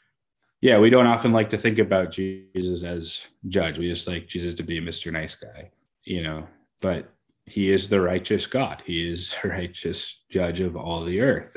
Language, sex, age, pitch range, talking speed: English, male, 20-39, 85-95 Hz, 190 wpm